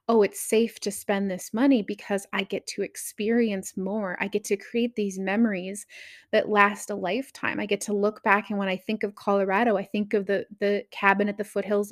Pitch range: 200-235 Hz